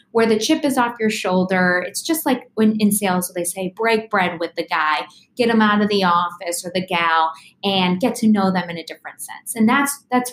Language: English